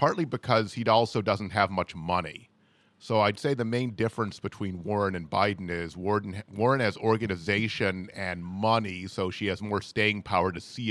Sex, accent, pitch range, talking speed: male, American, 95-115 Hz, 175 wpm